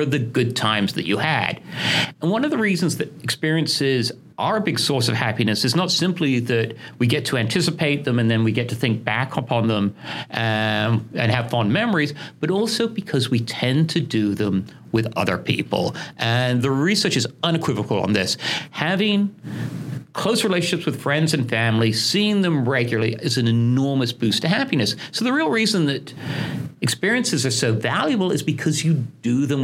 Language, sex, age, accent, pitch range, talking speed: English, male, 40-59, American, 120-170 Hz, 180 wpm